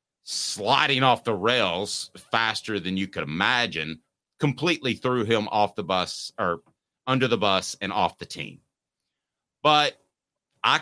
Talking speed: 140 wpm